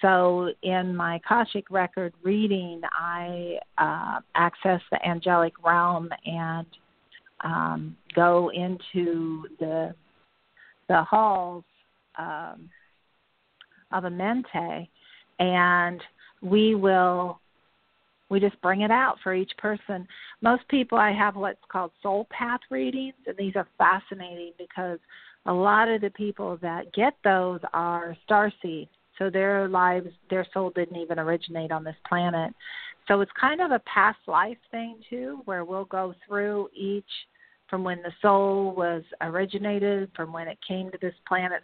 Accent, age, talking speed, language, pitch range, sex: American, 50-69, 140 wpm, English, 170-205 Hz, female